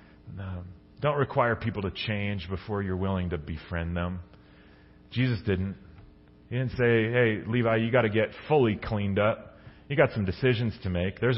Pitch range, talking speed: 100-145 Hz, 175 wpm